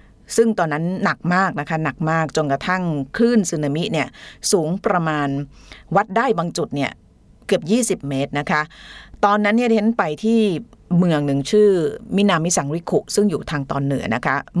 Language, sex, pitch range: Thai, female, 150-205 Hz